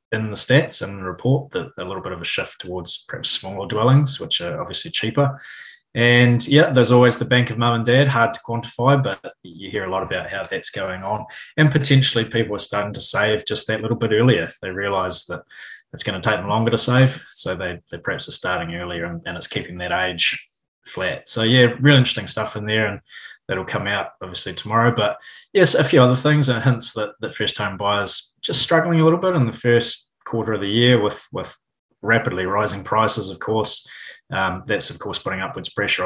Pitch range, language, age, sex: 105-125 Hz, English, 20-39, male